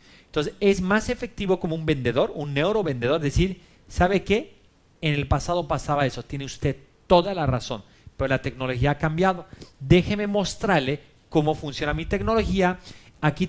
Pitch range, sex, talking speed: 130-180 Hz, male, 150 wpm